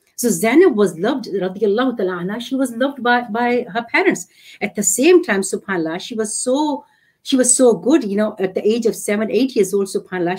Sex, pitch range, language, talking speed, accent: female, 185-250 Hz, English, 195 wpm, Indian